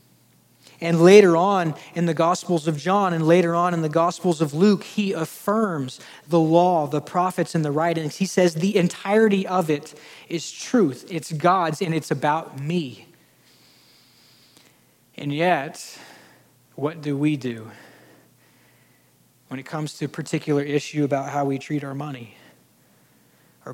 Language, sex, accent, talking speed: English, male, American, 150 wpm